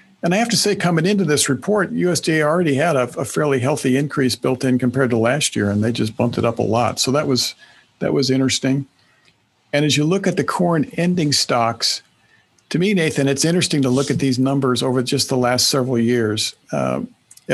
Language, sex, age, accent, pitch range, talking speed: English, male, 50-69, American, 120-145 Hz, 215 wpm